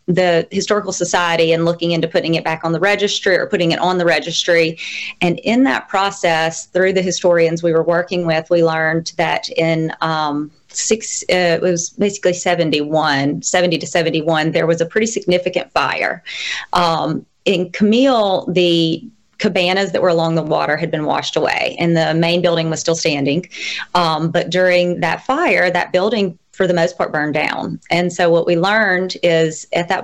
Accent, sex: American, female